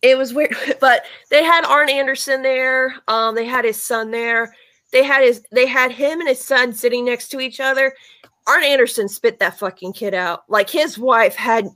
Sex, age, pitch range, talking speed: female, 20-39, 195-260 Hz, 205 wpm